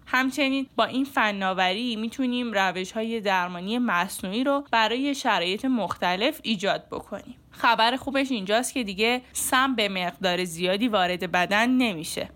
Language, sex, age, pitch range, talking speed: Persian, female, 10-29, 195-260 Hz, 130 wpm